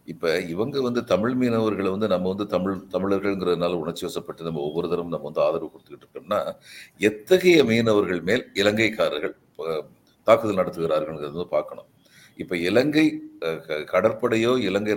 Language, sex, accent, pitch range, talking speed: Tamil, male, native, 95-135 Hz, 130 wpm